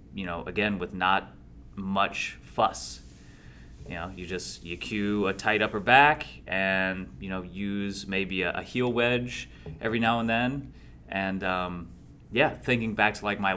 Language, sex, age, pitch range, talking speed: English, male, 30-49, 85-105 Hz, 170 wpm